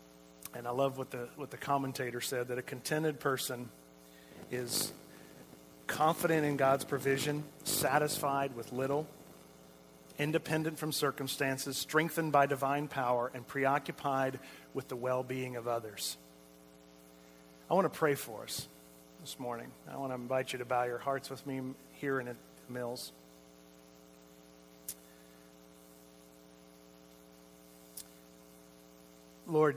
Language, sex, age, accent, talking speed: English, male, 40-59, American, 115 wpm